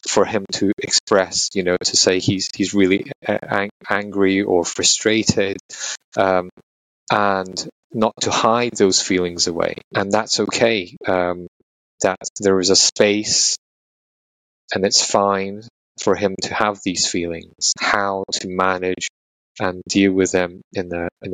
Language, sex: English, male